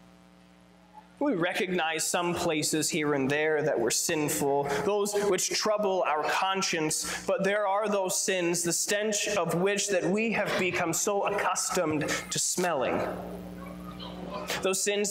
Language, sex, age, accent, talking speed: English, male, 20-39, American, 135 wpm